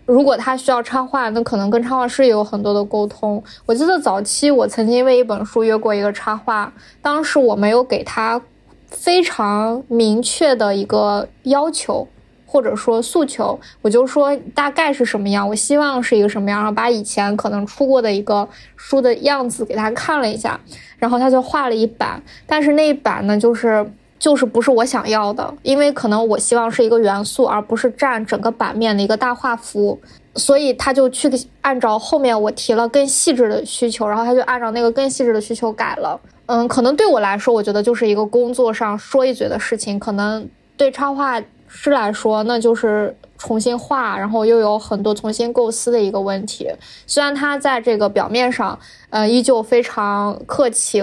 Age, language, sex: 20-39, Chinese, female